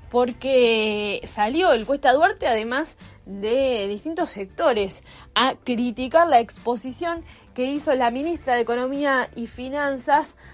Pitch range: 215-275 Hz